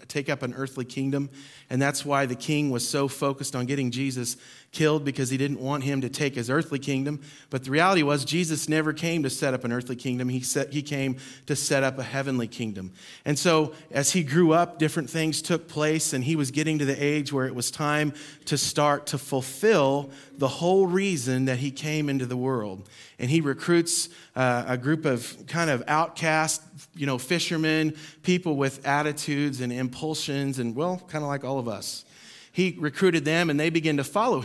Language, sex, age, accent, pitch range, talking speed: English, male, 40-59, American, 135-165 Hz, 205 wpm